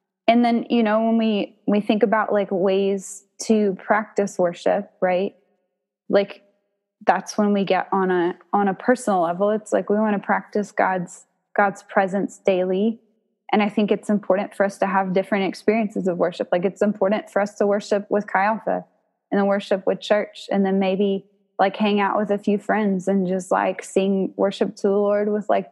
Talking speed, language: 195 wpm, English